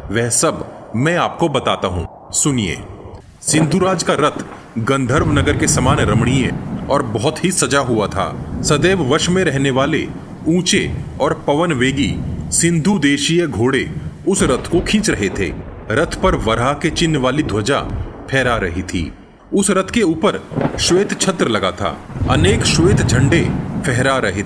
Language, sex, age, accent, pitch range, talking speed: Hindi, male, 30-49, native, 115-165 Hz, 150 wpm